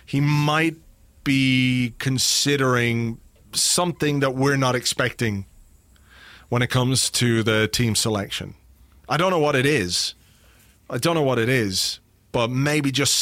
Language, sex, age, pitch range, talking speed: English, male, 30-49, 120-150 Hz, 140 wpm